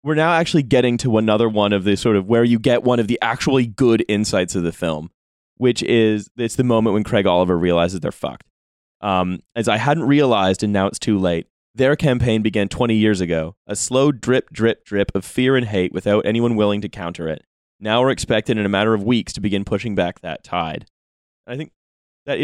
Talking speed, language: 220 wpm, English